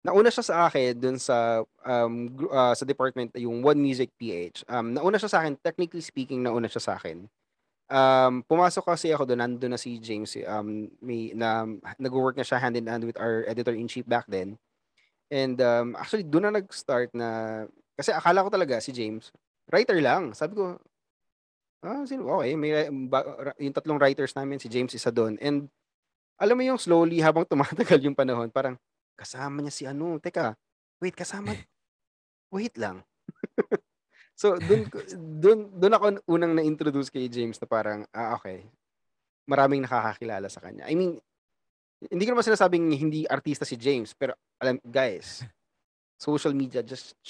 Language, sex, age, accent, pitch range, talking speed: Filipino, male, 20-39, native, 120-165 Hz, 160 wpm